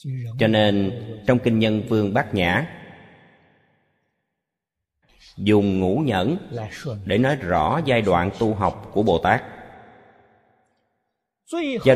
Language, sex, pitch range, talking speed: Vietnamese, male, 90-125 Hz, 110 wpm